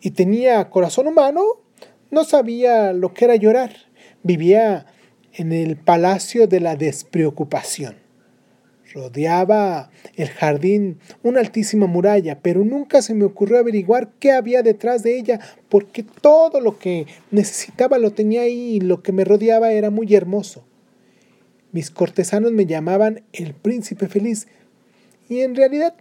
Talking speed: 140 wpm